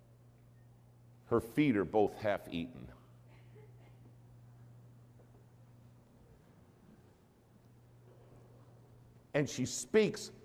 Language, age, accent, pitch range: English, 60-79, American, 120-135 Hz